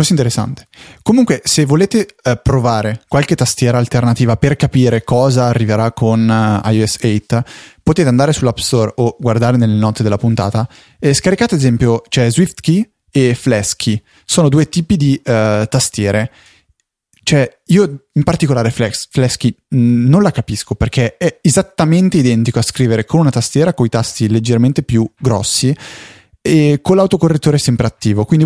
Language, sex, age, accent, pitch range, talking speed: Italian, male, 20-39, native, 115-155 Hz, 160 wpm